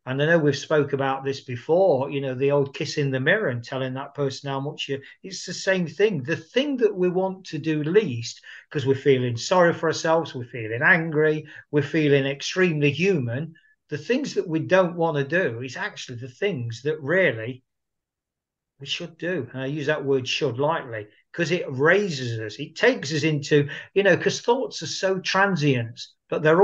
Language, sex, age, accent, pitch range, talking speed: English, male, 50-69, British, 135-170 Hz, 200 wpm